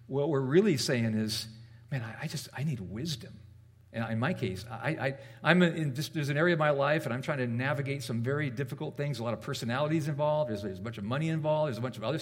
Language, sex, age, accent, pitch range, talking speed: English, male, 50-69, American, 115-175 Hz, 260 wpm